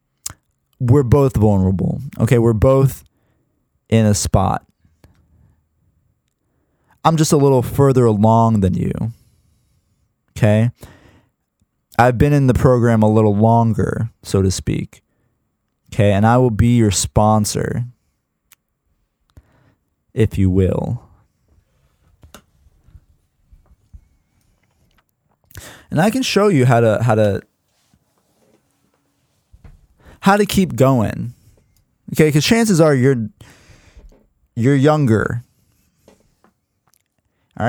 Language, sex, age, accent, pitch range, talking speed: English, male, 20-39, American, 105-140 Hz, 95 wpm